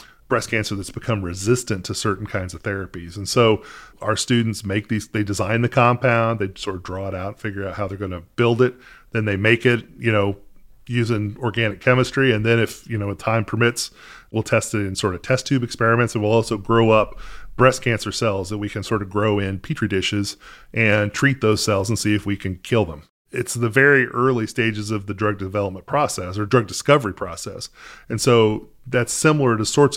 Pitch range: 105-120 Hz